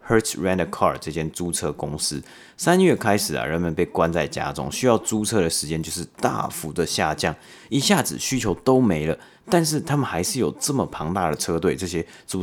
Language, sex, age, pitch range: Chinese, male, 30-49, 80-110 Hz